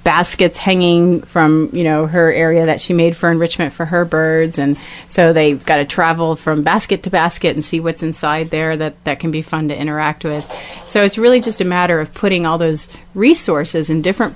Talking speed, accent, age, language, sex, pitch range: 215 wpm, American, 30-49, English, female, 160-190 Hz